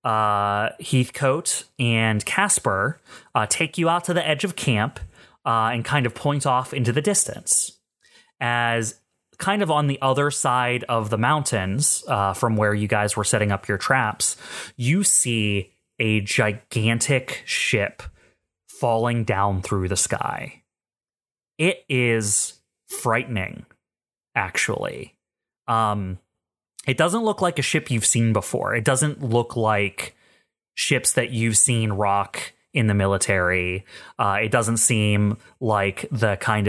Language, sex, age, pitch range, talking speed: English, male, 30-49, 105-130 Hz, 140 wpm